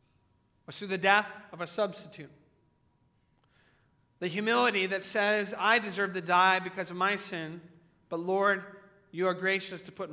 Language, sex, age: English, male, 40-59